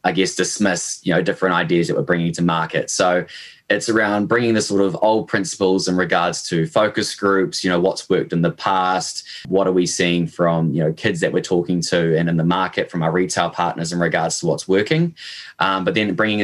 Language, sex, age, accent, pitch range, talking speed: English, male, 10-29, Australian, 85-95 Hz, 225 wpm